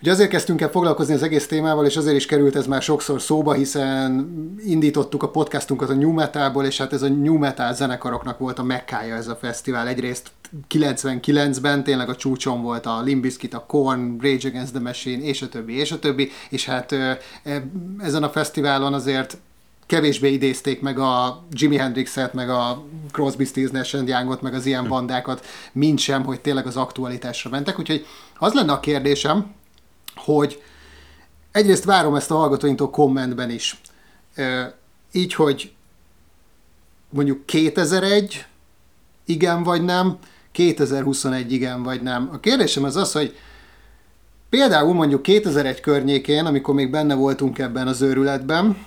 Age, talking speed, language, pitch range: 30-49, 155 wpm, Hungarian, 130-155 Hz